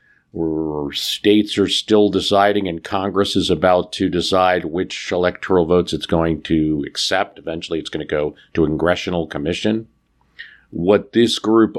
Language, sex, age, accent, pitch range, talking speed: English, male, 50-69, American, 85-105 Hz, 150 wpm